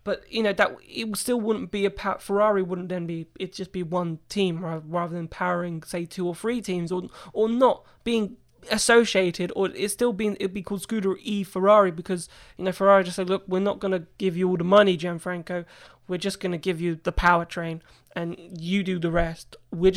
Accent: British